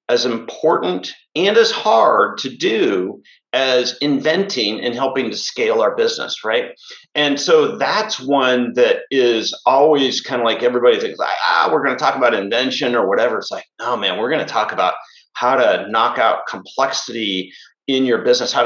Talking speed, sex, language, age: 175 wpm, male, English, 50-69